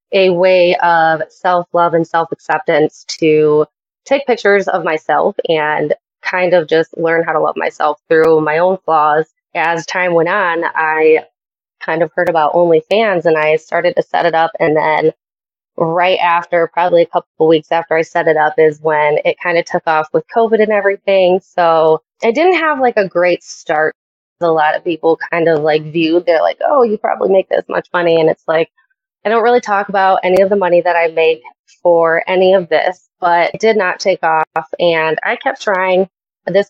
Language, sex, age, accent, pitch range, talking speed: English, female, 20-39, American, 160-190 Hz, 200 wpm